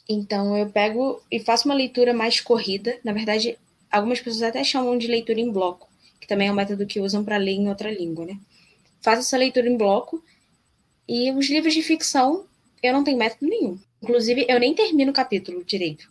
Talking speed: 200 wpm